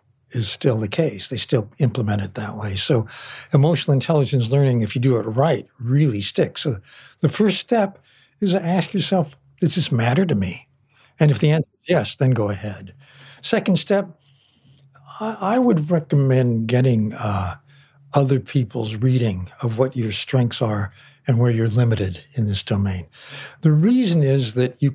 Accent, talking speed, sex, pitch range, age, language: American, 170 wpm, male, 115-145 Hz, 60-79, English